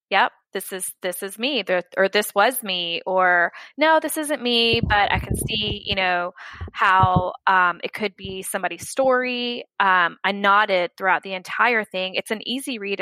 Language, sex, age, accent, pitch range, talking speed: English, female, 20-39, American, 185-225 Hz, 180 wpm